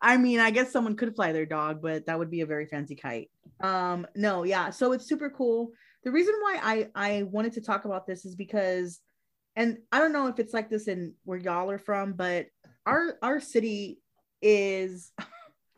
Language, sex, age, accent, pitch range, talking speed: English, female, 30-49, American, 170-215 Hz, 205 wpm